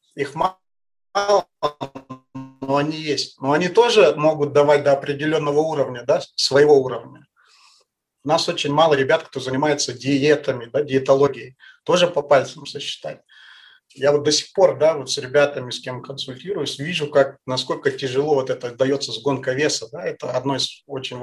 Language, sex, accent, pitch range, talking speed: Russian, male, native, 135-170 Hz, 135 wpm